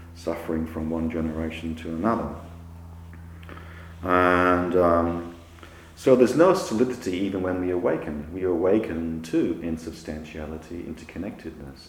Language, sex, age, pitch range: English, male, 40-59, 80-90 Hz